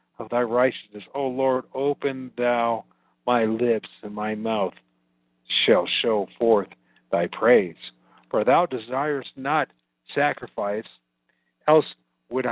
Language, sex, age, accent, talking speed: English, male, 50-69, American, 115 wpm